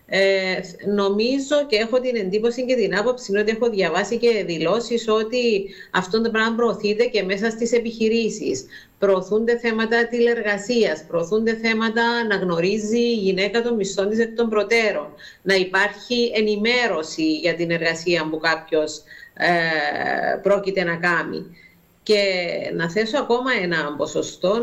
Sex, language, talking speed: female, Greek, 135 wpm